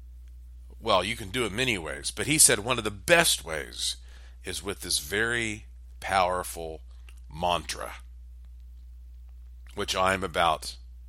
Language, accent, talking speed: English, American, 130 wpm